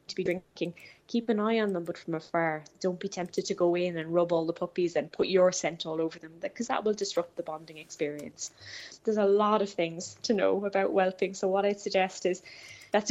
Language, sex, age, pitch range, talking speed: English, female, 10-29, 165-195 Hz, 235 wpm